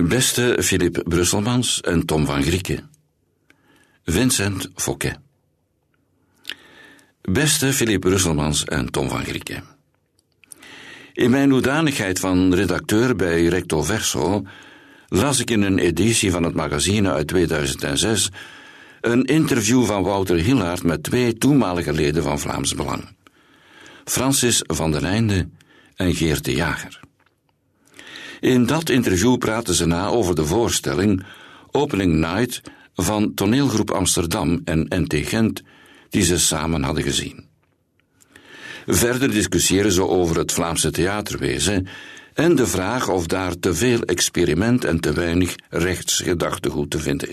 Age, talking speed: 60-79, 125 wpm